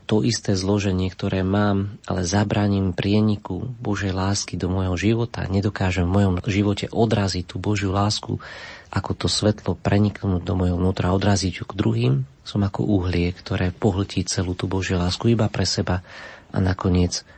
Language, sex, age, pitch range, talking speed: Slovak, male, 40-59, 90-105 Hz, 160 wpm